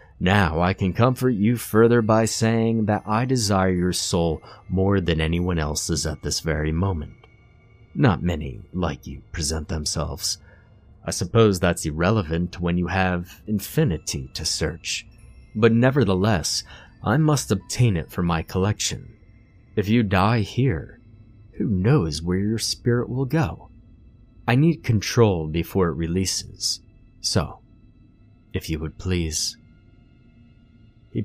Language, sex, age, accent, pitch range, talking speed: English, male, 30-49, American, 90-115 Hz, 135 wpm